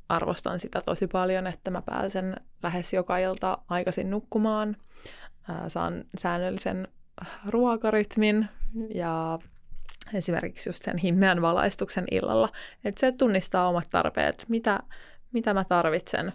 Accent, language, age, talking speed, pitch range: native, Finnish, 20-39, 115 wpm, 175-205 Hz